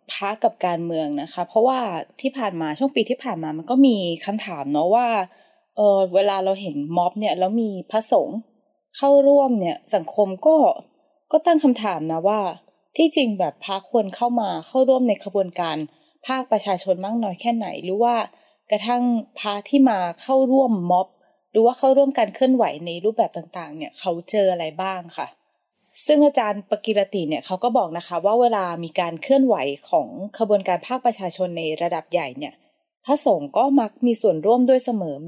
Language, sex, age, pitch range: Thai, female, 20-39, 175-245 Hz